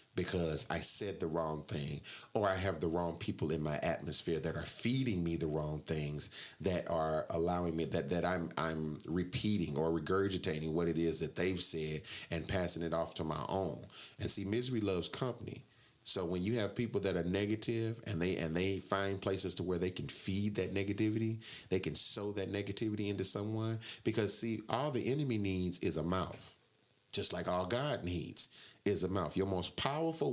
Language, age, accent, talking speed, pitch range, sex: English, 30-49, American, 195 wpm, 85-115 Hz, male